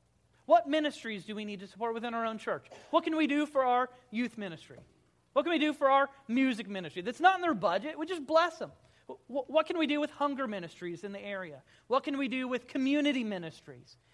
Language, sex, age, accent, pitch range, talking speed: English, male, 40-59, American, 180-275 Hz, 225 wpm